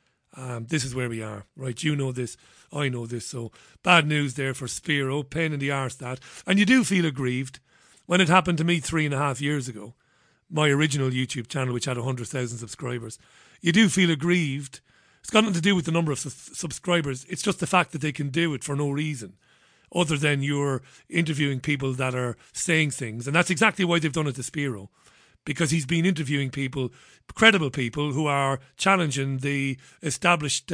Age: 40-59